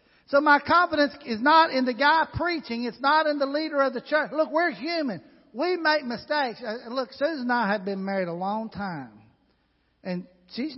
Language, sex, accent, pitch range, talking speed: English, male, American, 215-295 Hz, 195 wpm